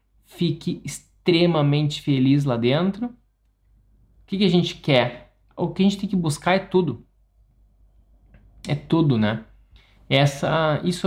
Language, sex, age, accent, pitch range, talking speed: Portuguese, male, 20-39, Brazilian, 125-175 Hz, 130 wpm